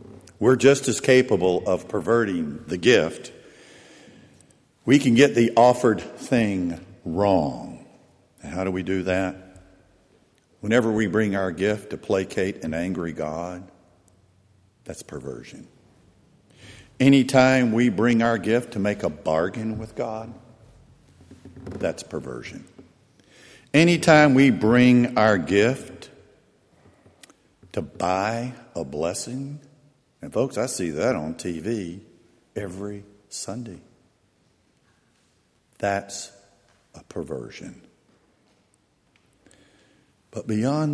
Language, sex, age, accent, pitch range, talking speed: English, male, 60-79, American, 95-125 Hz, 100 wpm